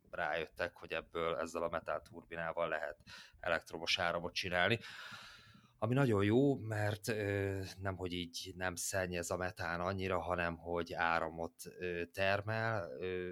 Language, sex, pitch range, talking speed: Hungarian, male, 80-90 Hz, 120 wpm